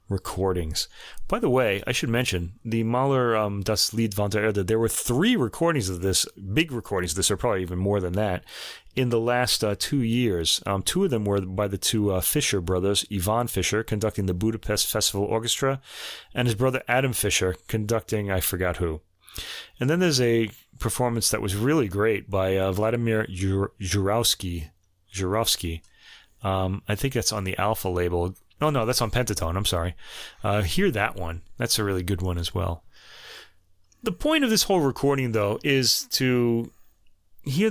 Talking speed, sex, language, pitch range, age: 185 wpm, male, English, 95-130 Hz, 30-49